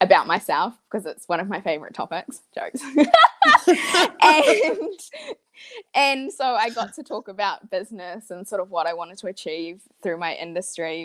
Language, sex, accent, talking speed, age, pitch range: English, female, Australian, 165 wpm, 20-39, 170-225 Hz